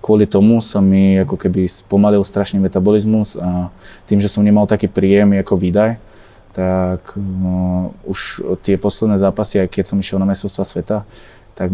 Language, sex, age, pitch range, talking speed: Slovak, male, 20-39, 95-105 Hz, 165 wpm